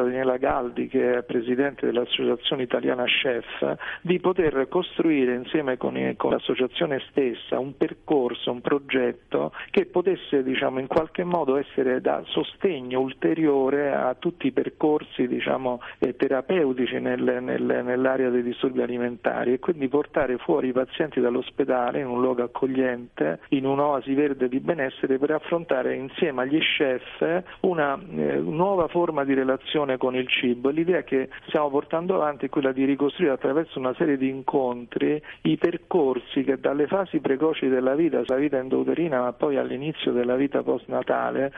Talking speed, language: 140 wpm, Italian